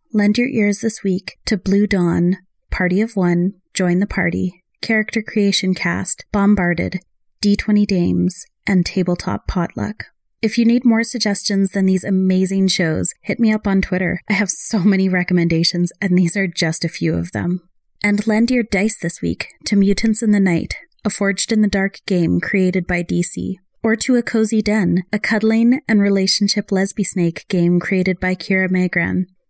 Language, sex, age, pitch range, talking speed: English, female, 30-49, 175-205 Hz, 175 wpm